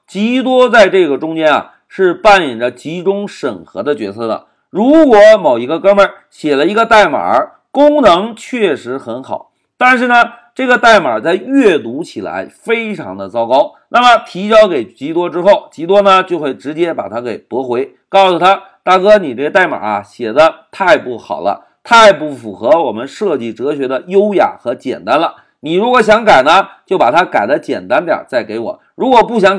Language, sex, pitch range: Chinese, male, 165-235 Hz